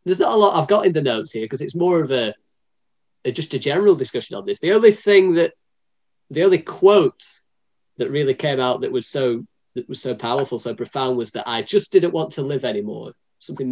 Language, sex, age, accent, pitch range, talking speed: English, male, 20-39, British, 115-165 Hz, 225 wpm